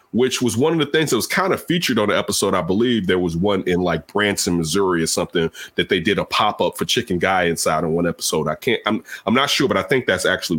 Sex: male